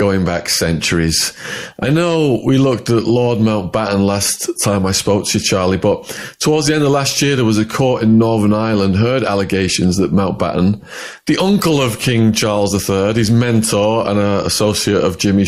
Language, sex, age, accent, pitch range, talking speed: English, male, 30-49, British, 100-120 Hz, 180 wpm